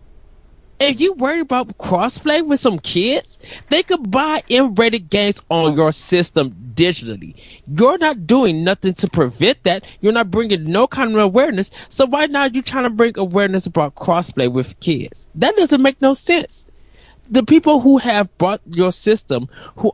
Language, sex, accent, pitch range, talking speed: English, male, American, 150-235 Hz, 170 wpm